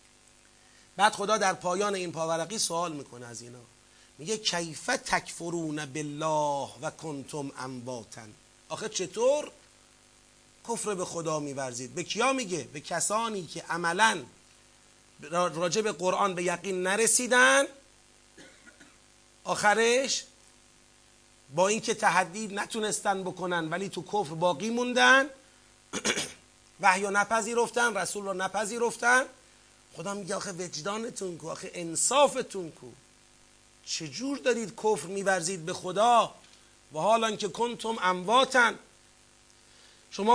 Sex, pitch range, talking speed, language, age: male, 160-220 Hz, 110 wpm, Persian, 30-49